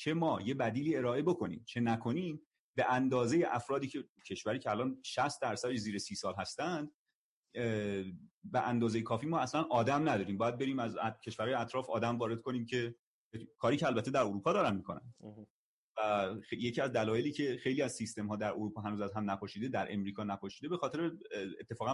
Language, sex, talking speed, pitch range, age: Persian, male, 180 wpm, 110-155 Hz, 30-49